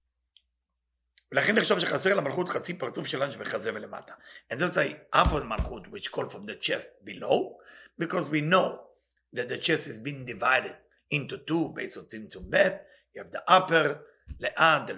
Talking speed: 125 wpm